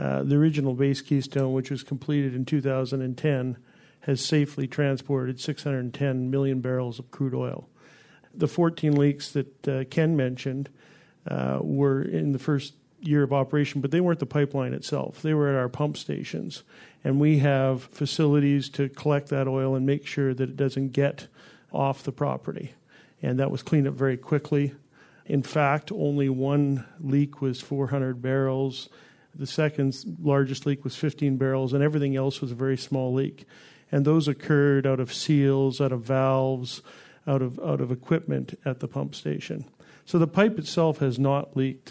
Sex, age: male, 50-69